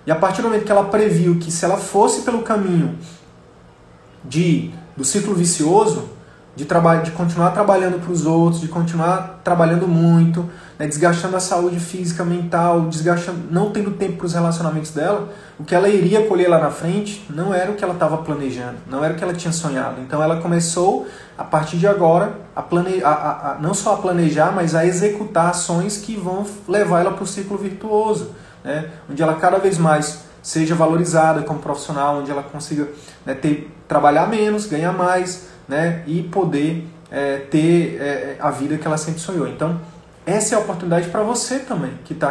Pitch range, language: 150-185 Hz, Portuguese